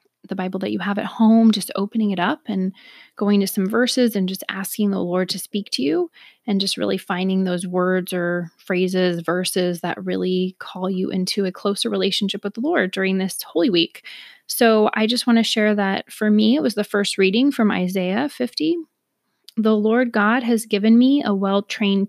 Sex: female